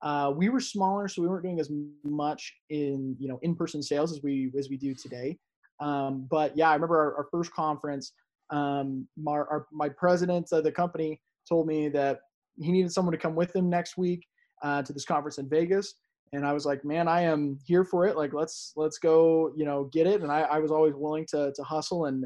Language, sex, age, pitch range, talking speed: English, male, 20-39, 145-175 Hz, 225 wpm